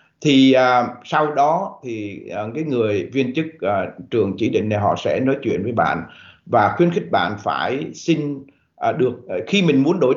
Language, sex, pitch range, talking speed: Vietnamese, male, 115-160 Hz, 200 wpm